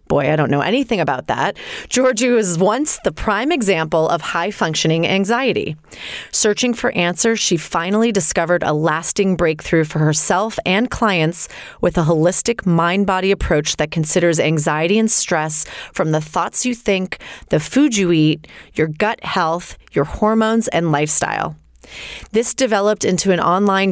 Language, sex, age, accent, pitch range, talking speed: English, female, 30-49, American, 160-210 Hz, 150 wpm